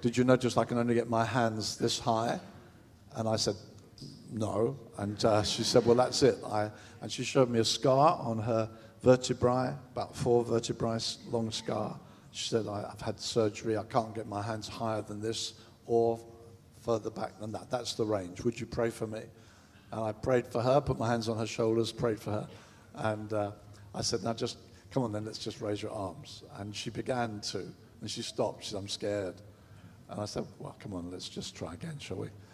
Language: English